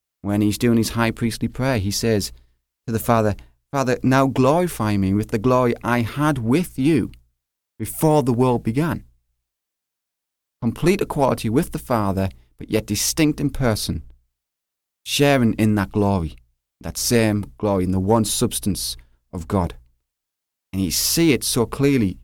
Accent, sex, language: British, male, English